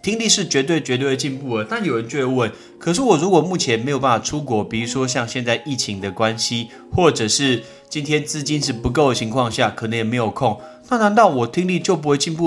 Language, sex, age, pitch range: Chinese, male, 30-49, 115-160 Hz